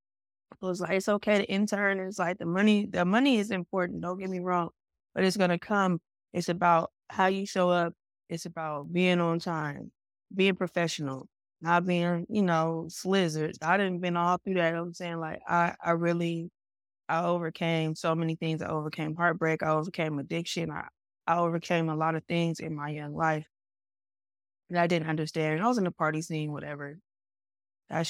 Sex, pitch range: female, 150-175 Hz